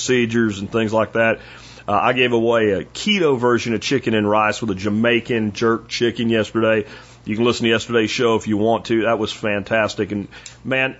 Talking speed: 205 wpm